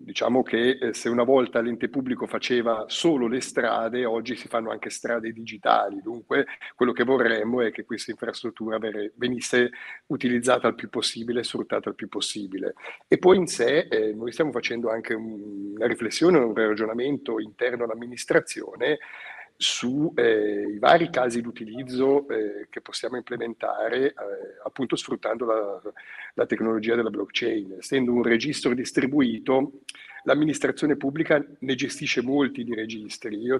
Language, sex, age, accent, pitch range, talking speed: Italian, male, 50-69, native, 115-130 Hz, 135 wpm